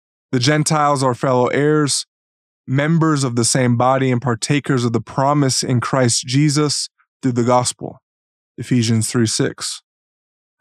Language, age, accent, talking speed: English, 20-39, American, 130 wpm